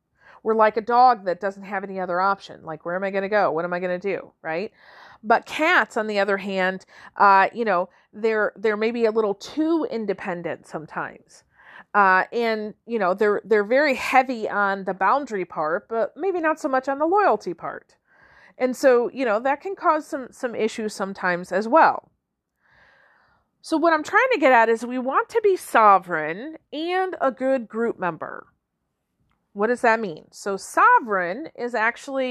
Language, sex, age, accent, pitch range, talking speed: English, female, 40-59, American, 195-285 Hz, 190 wpm